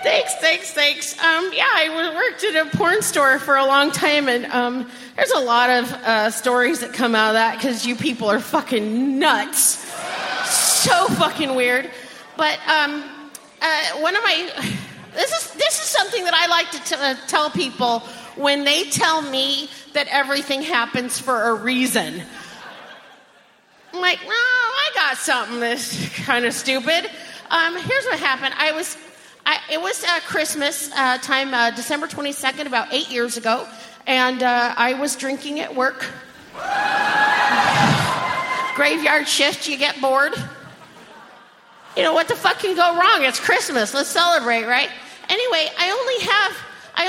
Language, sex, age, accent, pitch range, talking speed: English, female, 40-59, American, 250-325 Hz, 160 wpm